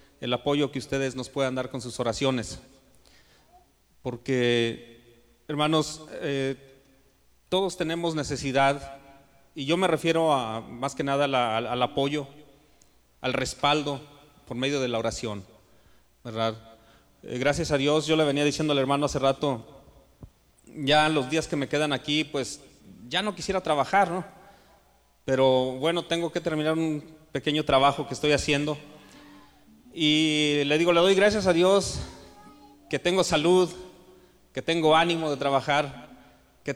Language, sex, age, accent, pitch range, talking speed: Spanish, male, 40-59, Mexican, 130-155 Hz, 145 wpm